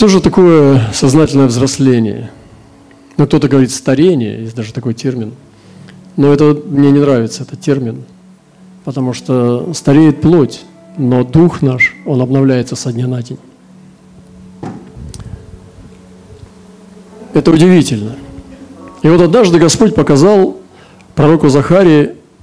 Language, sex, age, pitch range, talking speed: Russian, male, 40-59, 125-155 Hz, 110 wpm